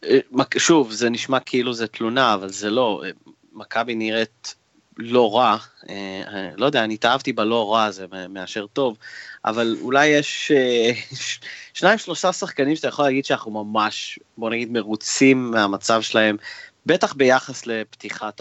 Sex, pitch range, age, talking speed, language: male, 110-140 Hz, 30-49, 135 wpm, Hebrew